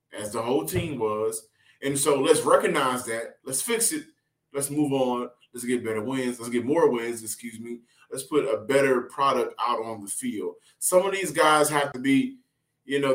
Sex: male